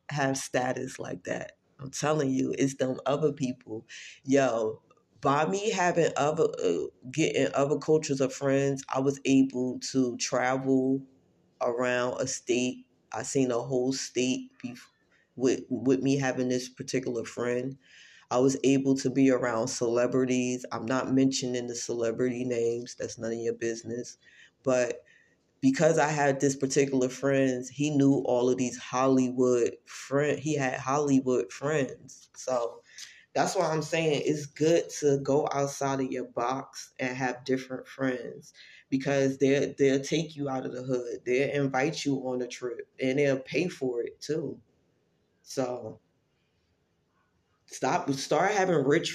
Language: English